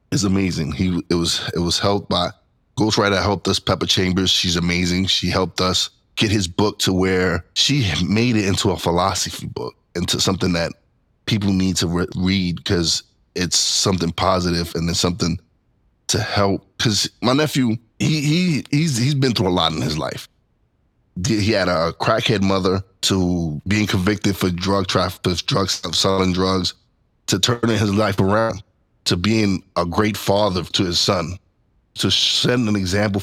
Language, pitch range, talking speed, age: English, 90-105 Hz, 170 wpm, 20-39